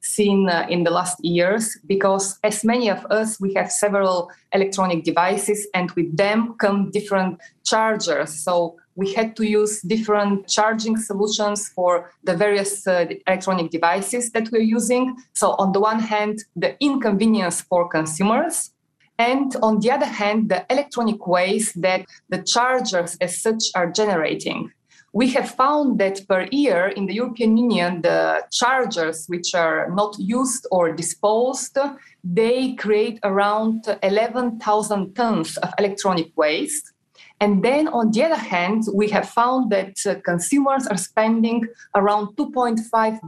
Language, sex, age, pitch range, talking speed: English, female, 20-39, 185-230 Hz, 145 wpm